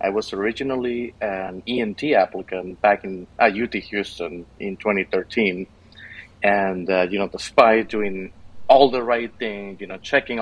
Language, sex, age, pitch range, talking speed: English, male, 30-49, 95-115 Hz, 150 wpm